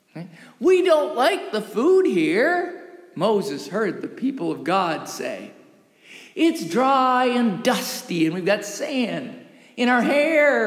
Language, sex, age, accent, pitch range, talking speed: English, male, 50-69, American, 210-320 Hz, 135 wpm